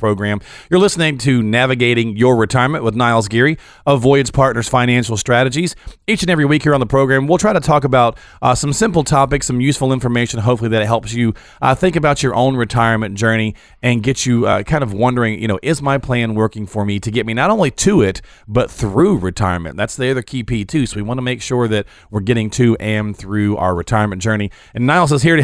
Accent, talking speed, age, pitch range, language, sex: American, 230 wpm, 40-59, 110-140 Hz, English, male